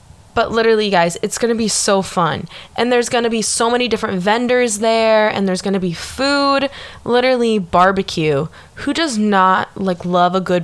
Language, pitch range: English, 165-220 Hz